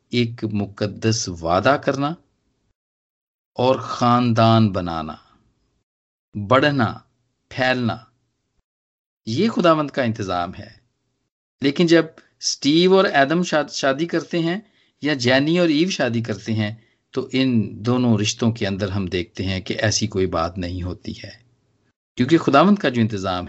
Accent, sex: native, male